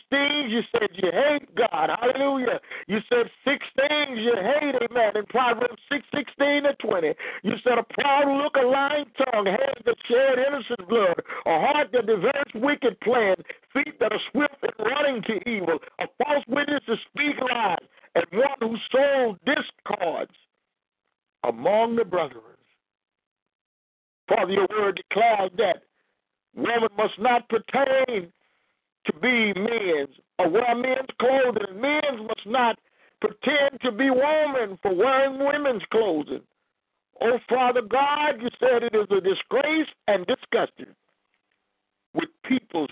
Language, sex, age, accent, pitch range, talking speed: English, male, 50-69, American, 225-285 Hz, 140 wpm